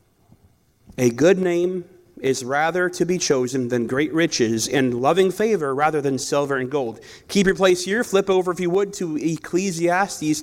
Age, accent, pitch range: 40-59, American, 150-200 Hz